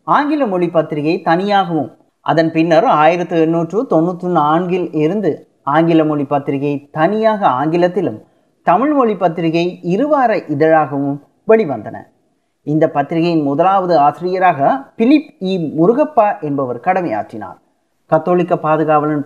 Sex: male